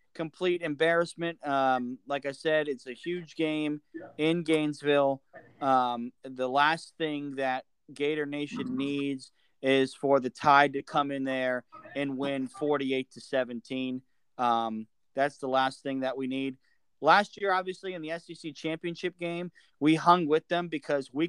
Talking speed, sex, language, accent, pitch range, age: 155 wpm, male, English, American, 135-165 Hz, 30-49